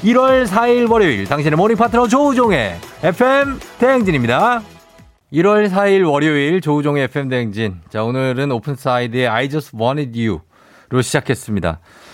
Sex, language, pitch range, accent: male, Korean, 115-160 Hz, native